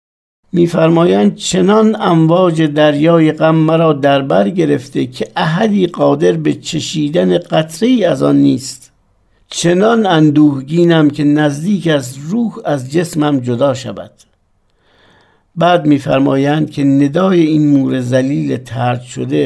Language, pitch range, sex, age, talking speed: Persian, 125-170 Hz, male, 60-79, 110 wpm